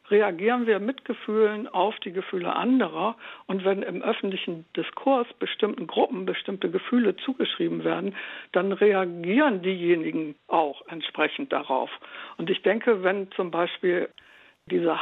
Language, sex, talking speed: German, female, 130 wpm